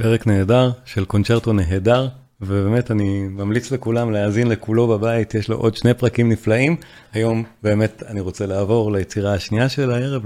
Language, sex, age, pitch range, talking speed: Hebrew, male, 40-59, 105-130 Hz, 160 wpm